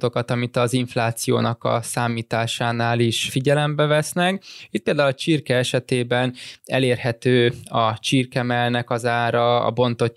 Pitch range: 115-130 Hz